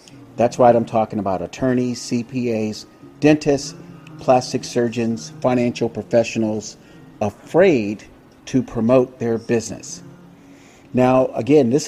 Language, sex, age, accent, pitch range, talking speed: English, male, 50-69, American, 115-145 Hz, 100 wpm